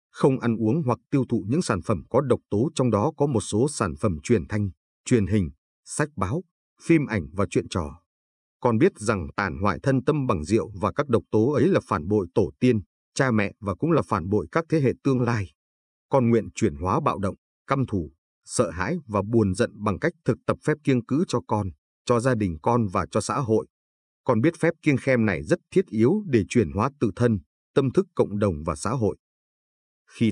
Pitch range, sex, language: 95-130 Hz, male, Vietnamese